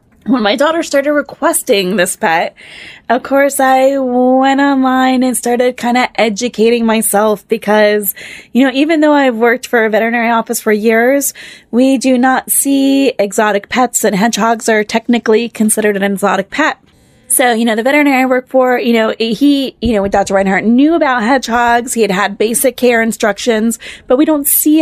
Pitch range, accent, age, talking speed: 215-260 Hz, American, 20-39, 180 wpm